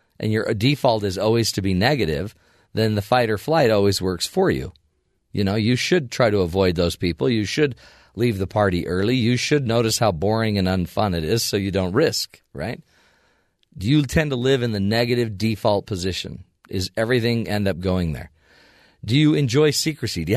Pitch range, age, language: 90-120 Hz, 40-59, English